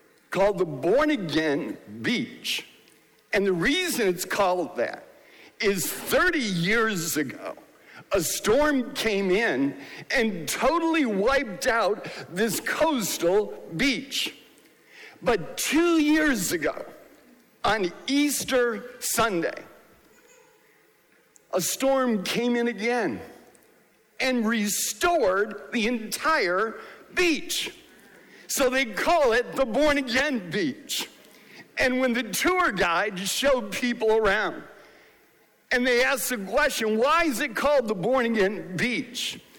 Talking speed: 110 wpm